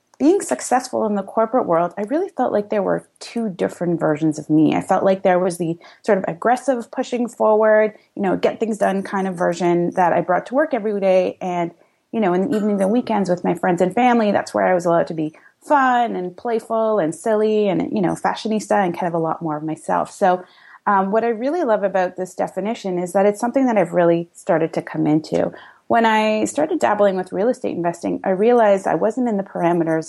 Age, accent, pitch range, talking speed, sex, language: 30-49, American, 170-225 Hz, 230 wpm, female, English